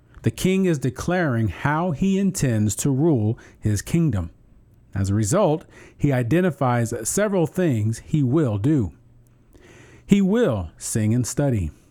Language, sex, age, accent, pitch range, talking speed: English, male, 40-59, American, 115-155 Hz, 130 wpm